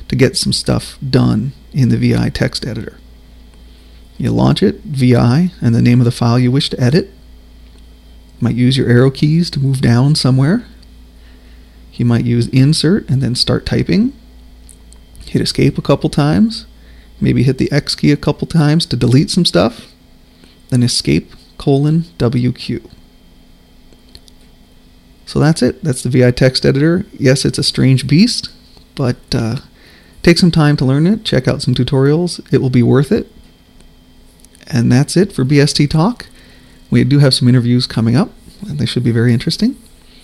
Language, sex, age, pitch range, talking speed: English, male, 30-49, 105-145 Hz, 165 wpm